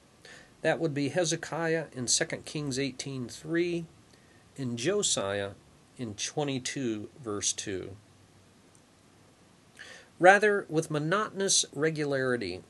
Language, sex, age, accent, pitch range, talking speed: English, male, 40-59, American, 120-160 Hz, 90 wpm